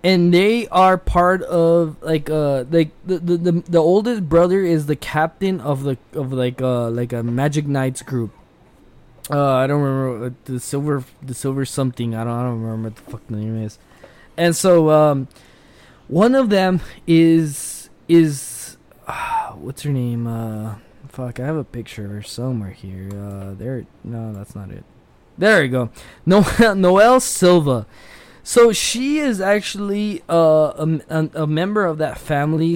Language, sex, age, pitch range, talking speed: English, male, 20-39, 130-180 Hz, 170 wpm